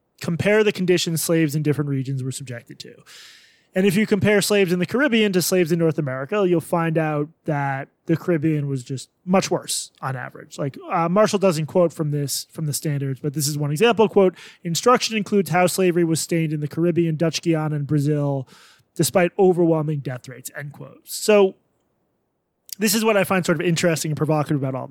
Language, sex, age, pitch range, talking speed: English, male, 20-39, 155-200 Hz, 200 wpm